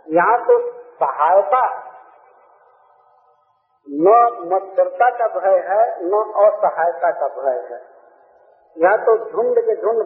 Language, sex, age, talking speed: Hindi, male, 50-69, 105 wpm